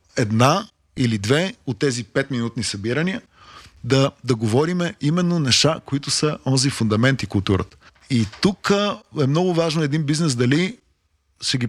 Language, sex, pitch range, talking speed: Bulgarian, male, 110-155 Hz, 145 wpm